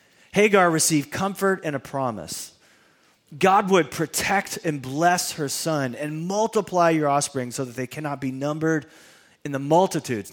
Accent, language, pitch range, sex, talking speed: American, English, 150-205 Hz, male, 150 wpm